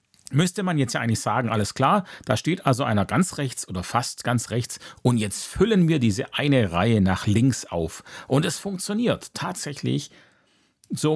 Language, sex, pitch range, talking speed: German, male, 110-155 Hz, 175 wpm